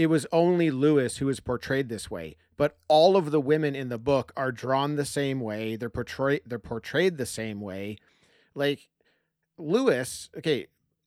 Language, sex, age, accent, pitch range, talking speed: English, male, 40-59, American, 120-150 Hz, 175 wpm